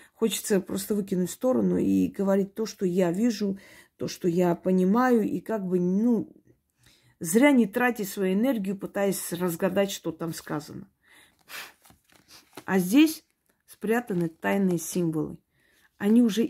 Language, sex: Russian, female